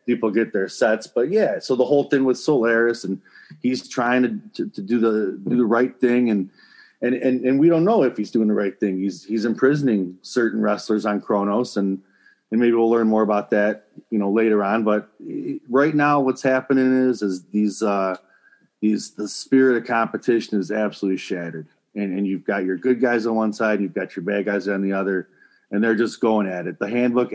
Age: 30-49